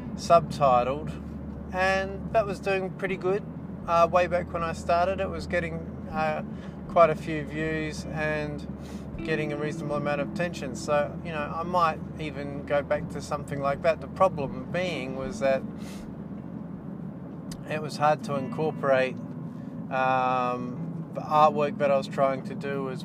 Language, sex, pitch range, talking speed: English, male, 140-185 Hz, 155 wpm